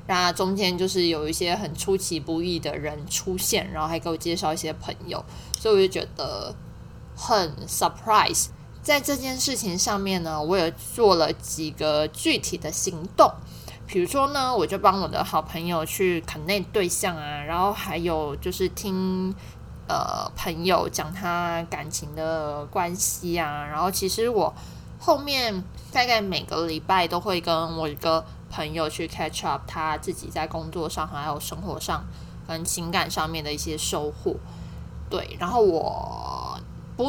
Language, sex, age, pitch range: Chinese, female, 20-39, 160-205 Hz